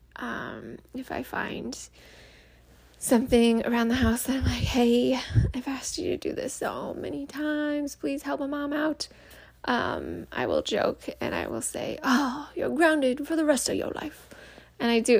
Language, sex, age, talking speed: English, female, 20-39, 180 wpm